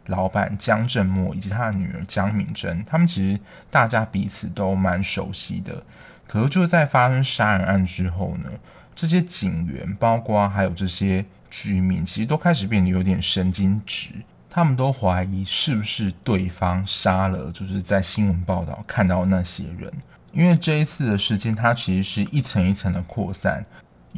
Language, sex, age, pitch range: Chinese, male, 20-39, 90-110 Hz